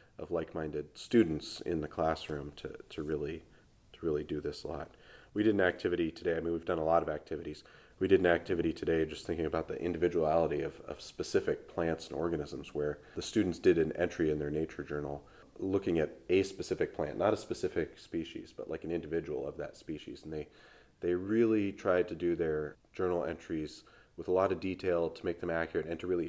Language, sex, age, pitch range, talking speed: English, male, 30-49, 80-95 Hz, 210 wpm